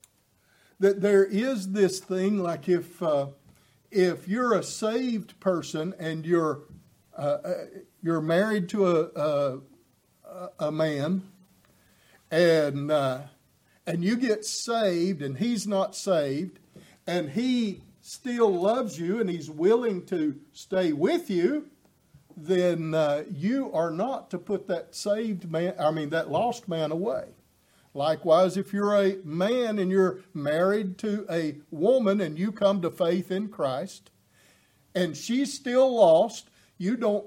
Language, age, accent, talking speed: English, 50-69, American, 135 wpm